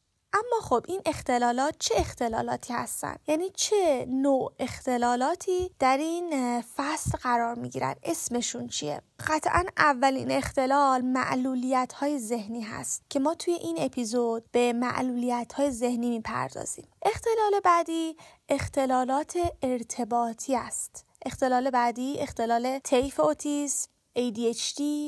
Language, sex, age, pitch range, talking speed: Persian, female, 20-39, 245-320 Hz, 110 wpm